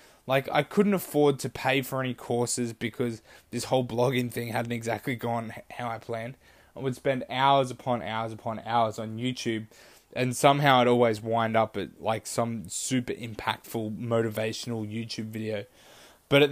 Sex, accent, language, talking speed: male, Australian, English, 165 wpm